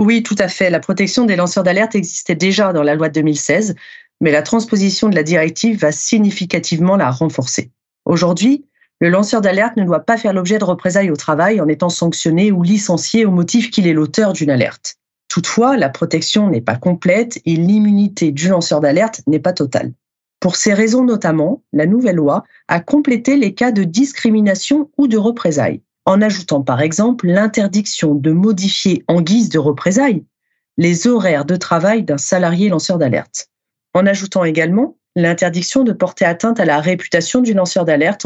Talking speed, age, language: 175 wpm, 40-59, French